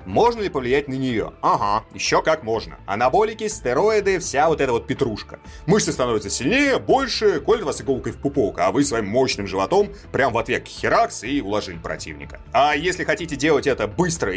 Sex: male